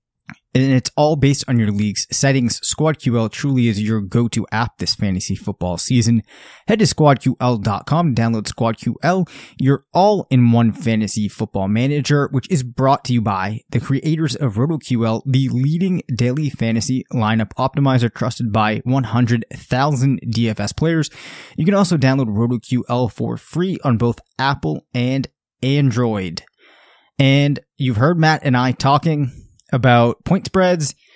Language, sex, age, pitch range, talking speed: English, male, 20-39, 115-140 Hz, 140 wpm